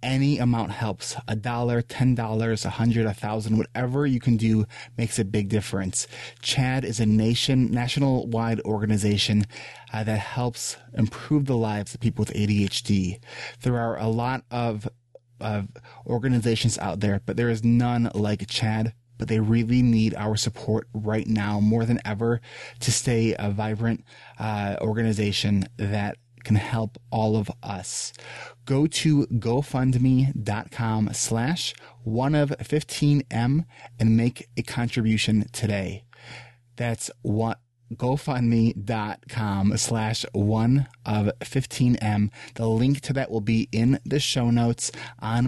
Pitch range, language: 110-120 Hz, English